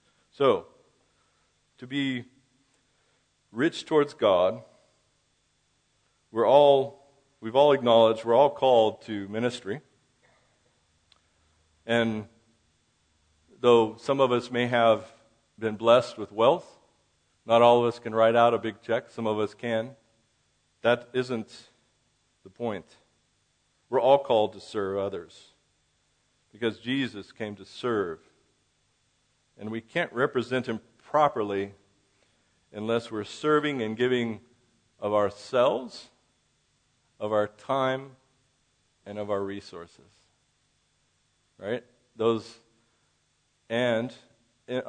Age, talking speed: 50-69, 105 wpm